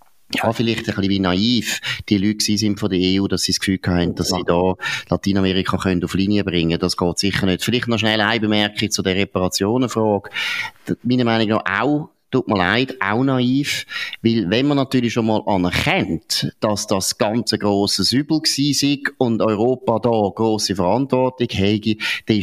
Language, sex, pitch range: German, male, 95-115 Hz